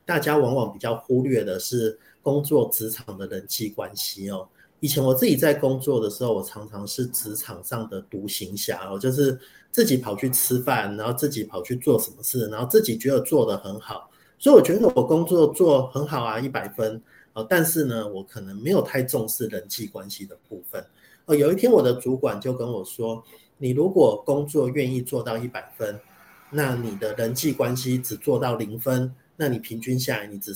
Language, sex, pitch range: Chinese, male, 115-145 Hz